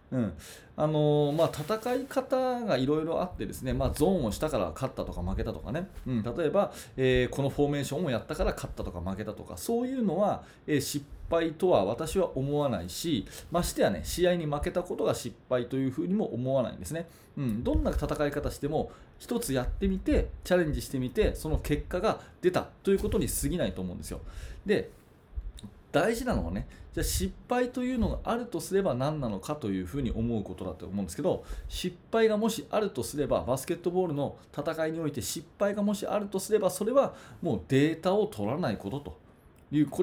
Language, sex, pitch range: Japanese, male, 115-190 Hz